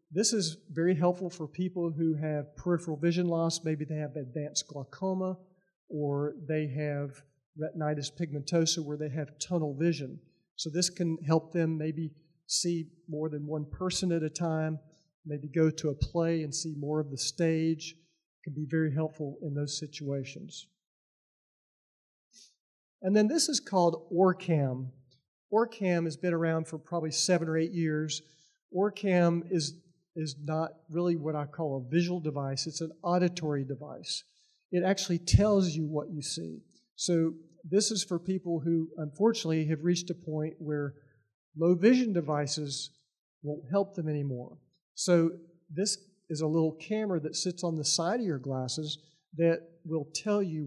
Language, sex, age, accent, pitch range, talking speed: English, male, 50-69, American, 150-175 Hz, 160 wpm